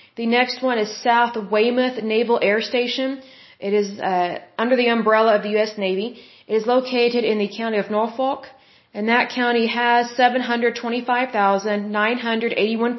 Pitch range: 215-250 Hz